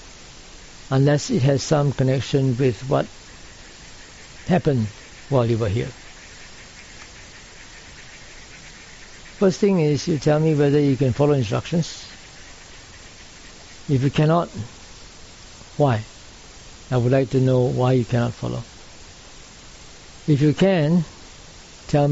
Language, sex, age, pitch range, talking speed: English, male, 60-79, 115-150 Hz, 110 wpm